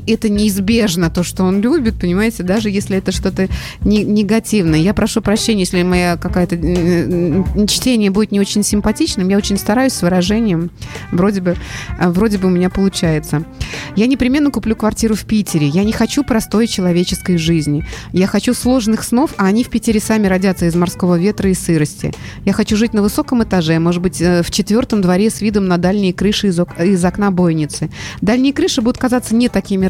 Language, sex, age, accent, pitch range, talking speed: Russian, female, 30-49, native, 175-220 Hz, 175 wpm